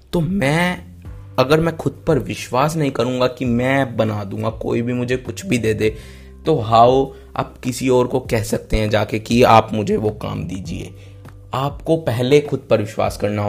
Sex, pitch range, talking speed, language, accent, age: male, 105-135 Hz, 185 wpm, Hindi, native, 20-39